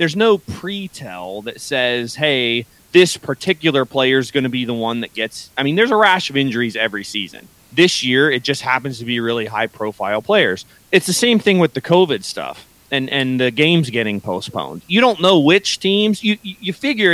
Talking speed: 205 wpm